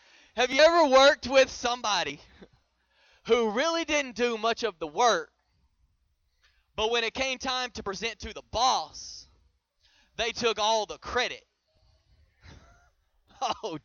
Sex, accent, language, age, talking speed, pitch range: male, American, English, 20-39, 130 wpm, 220-265 Hz